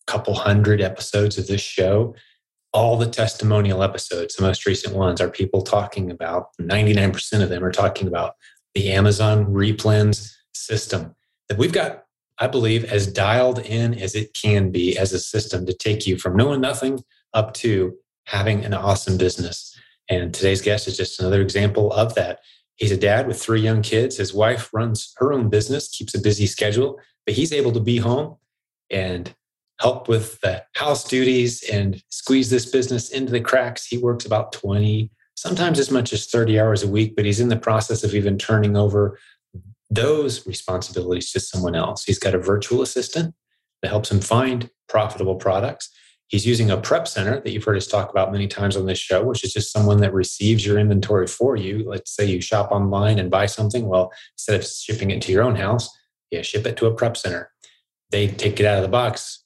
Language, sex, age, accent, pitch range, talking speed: English, male, 30-49, American, 95-115 Hz, 195 wpm